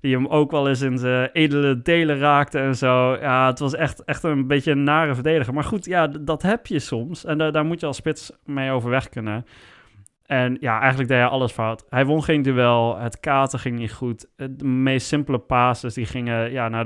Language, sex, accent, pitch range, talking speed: Dutch, male, Dutch, 120-150 Hz, 230 wpm